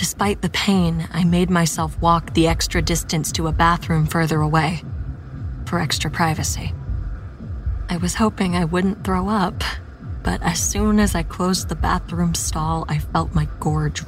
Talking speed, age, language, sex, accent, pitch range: 160 wpm, 20-39, English, female, American, 115-180 Hz